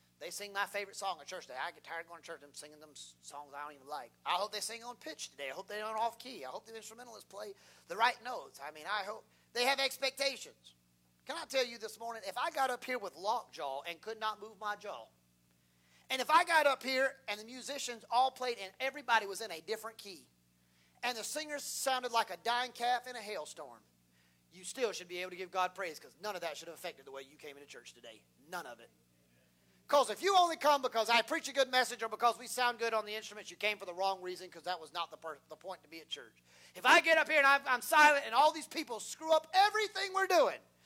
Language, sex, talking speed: English, male, 260 wpm